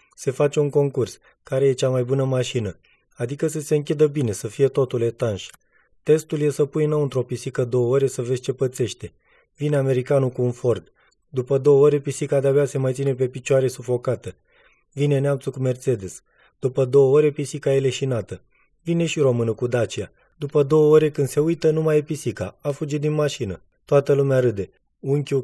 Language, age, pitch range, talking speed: Romanian, 20-39, 120-145 Hz, 190 wpm